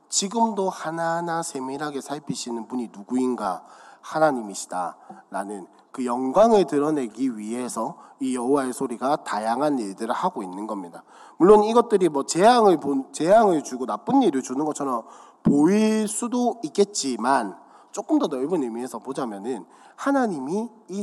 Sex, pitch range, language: male, 125-205 Hz, Korean